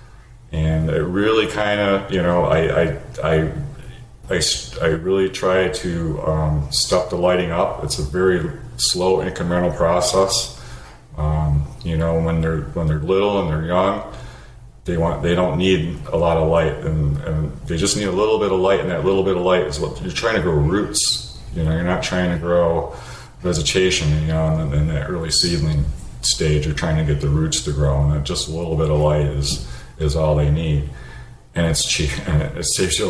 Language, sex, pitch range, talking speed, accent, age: English, male, 75-85 Hz, 205 wpm, American, 40-59